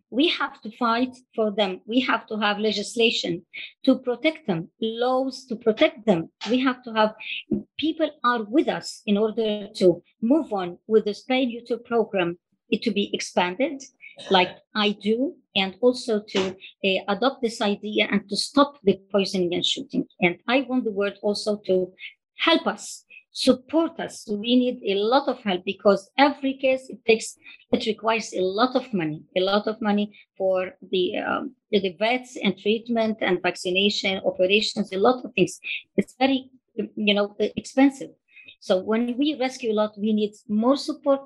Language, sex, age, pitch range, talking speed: English, male, 50-69, 200-250 Hz, 170 wpm